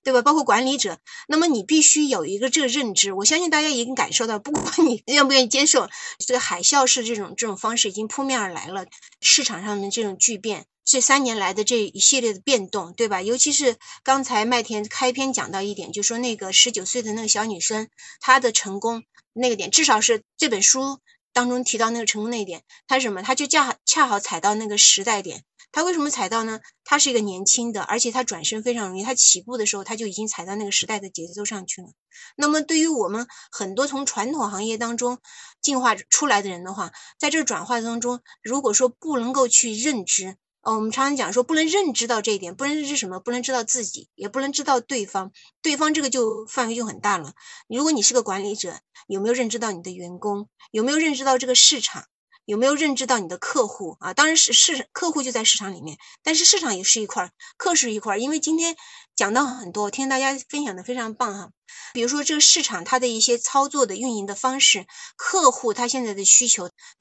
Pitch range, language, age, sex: 210-280 Hz, Chinese, 20-39, female